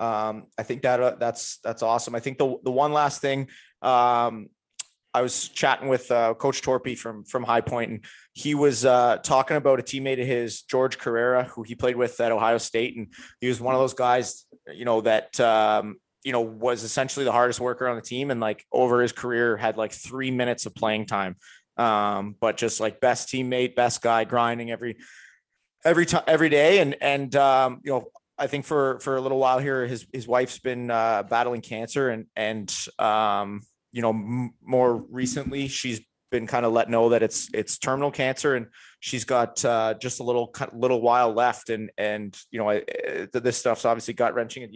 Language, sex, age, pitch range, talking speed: English, male, 20-39, 115-130 Hz, 205 wpm